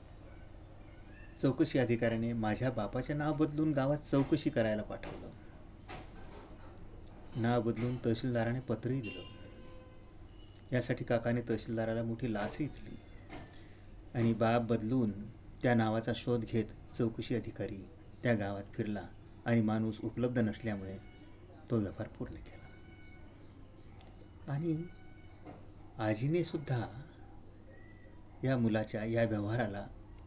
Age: 30-49